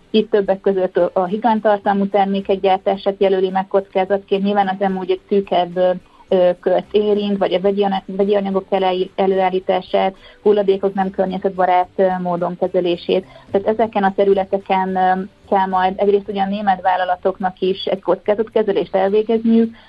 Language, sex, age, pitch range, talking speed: Hungarian, female, 30-49, 185-200 Hz, 135 wpm